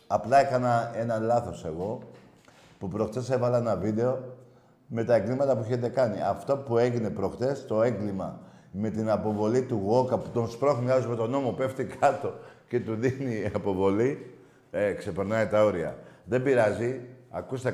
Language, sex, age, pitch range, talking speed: Greek, male, 50-69, 115-150 Hz, 155 wpm